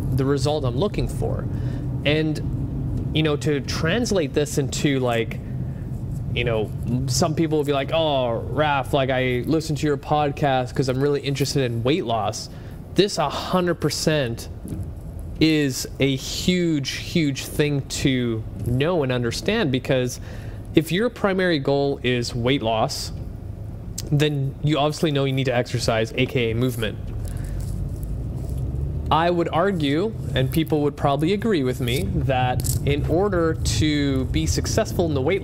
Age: 20-39